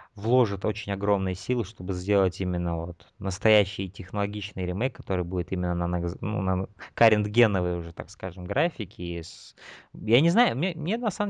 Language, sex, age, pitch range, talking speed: Russian, male, 20-39, 95-120 Hz, 155 wpm